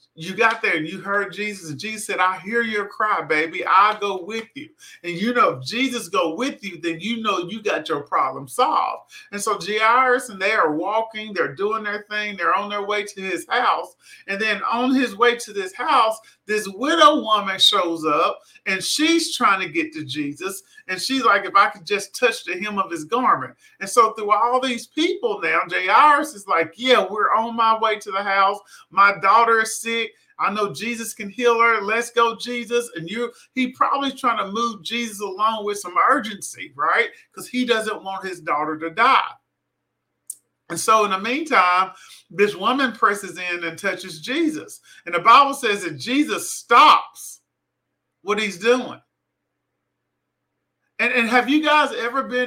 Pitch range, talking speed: 195-240 Hz, 190 wpm